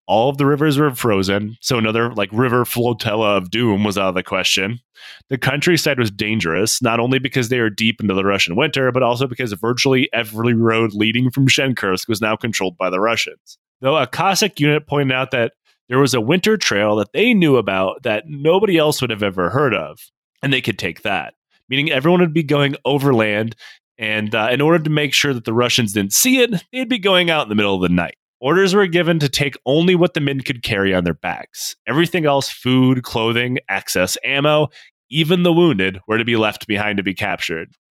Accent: American